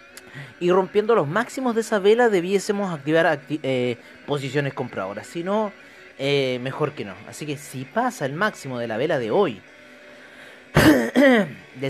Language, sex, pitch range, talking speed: Spanish, male, 125-160 Hz, 155 wpm